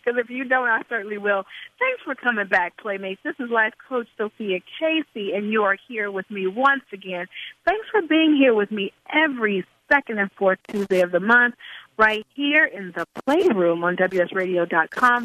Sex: female